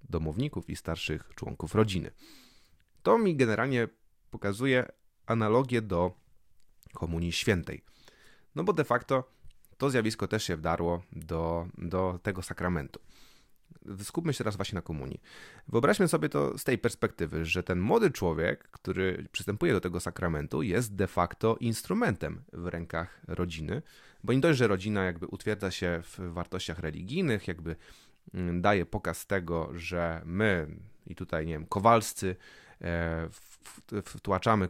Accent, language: Polish, English